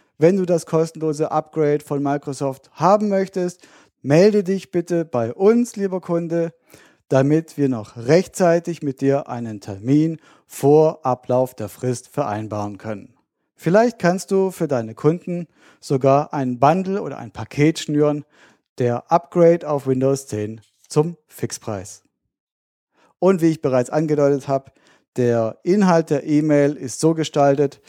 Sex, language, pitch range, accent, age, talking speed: male, German, 135-165 Hz, German, 40-59, 135 wpm